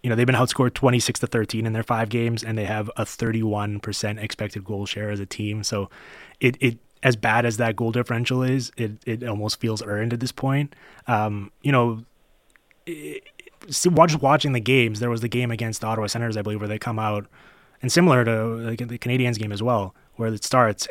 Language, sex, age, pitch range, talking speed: English, male, 20-39, 105-120 Hz, 215 wpm